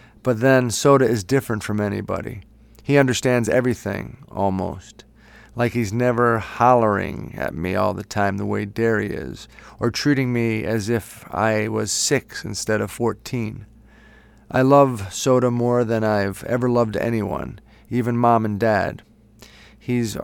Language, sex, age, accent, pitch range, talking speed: English, male, 40-59, American, 110-125 Hz, 145 wpm